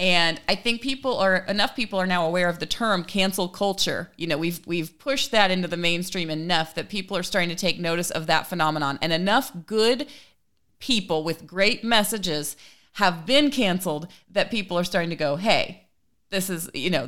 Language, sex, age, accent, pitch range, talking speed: English, female, 30-49, American, 165-220 Hz, 195 wpm